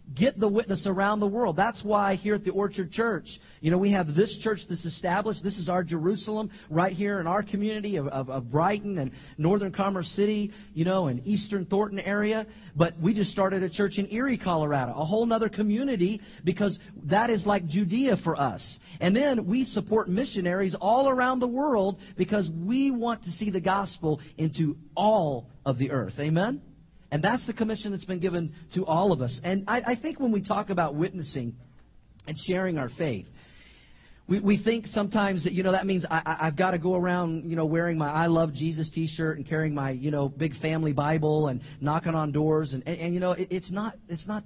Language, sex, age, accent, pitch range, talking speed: English, male, 40-59, American, 160-210 Hz, 210 wpm